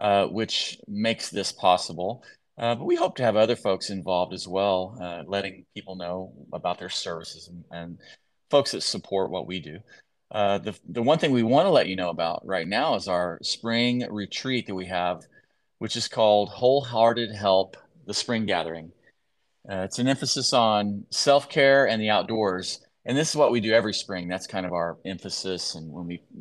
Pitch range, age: 95-120 Hz, 30-49